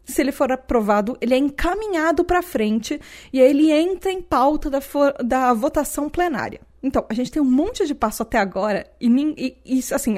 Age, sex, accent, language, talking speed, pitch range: 20-39, female, Brazilian, Portuguese, 195 wpm, 225-295 Hz